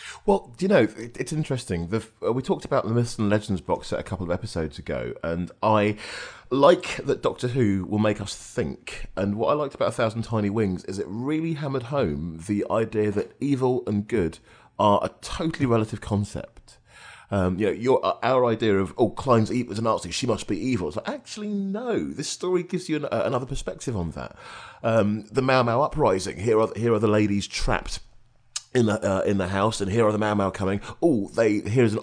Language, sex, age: English, male, 30-49